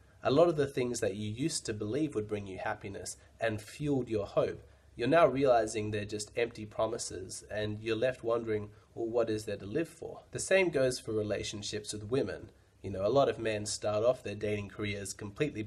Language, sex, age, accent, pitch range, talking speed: English, male, 20-39, Australian, 105-120 Hz, 210 wpm